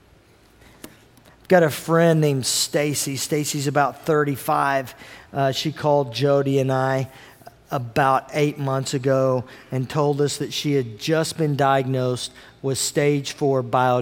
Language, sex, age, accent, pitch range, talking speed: English, male, 40-59, American, 120-145 Hz, 135 wpm